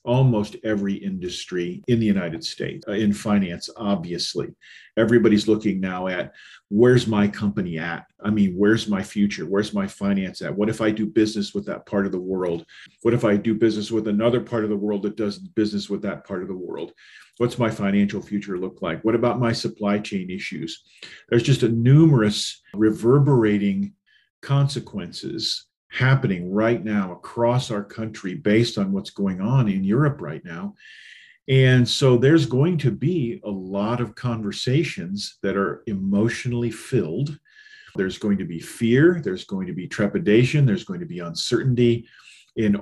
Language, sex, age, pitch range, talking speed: English, male, 40-59, 105-135 Hz, 170 wpm